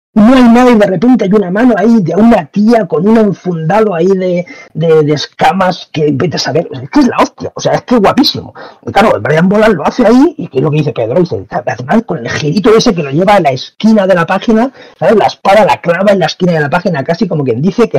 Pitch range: 160-230 Hz